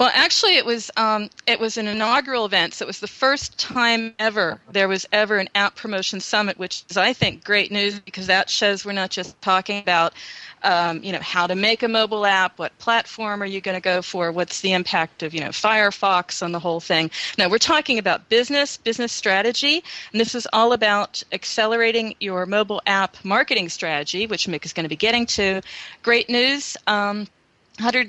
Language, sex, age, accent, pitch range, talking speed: English, female, 40-59, American, 190-230 Hz, 205 wpm